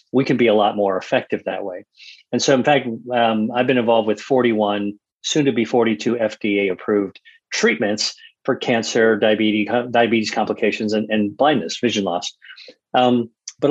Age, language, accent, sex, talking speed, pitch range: 40-59, English, American, male, 165 wpm, 110-135 Hz